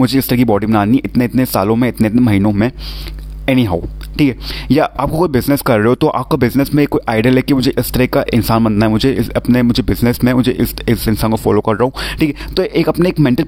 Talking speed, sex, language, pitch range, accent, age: 265 wpm, male, Hindi, 115-145 Hz, native, 30-49